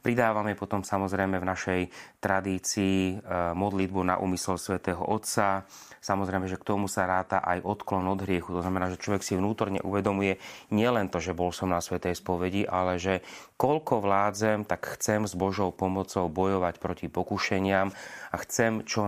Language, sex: Slovak, male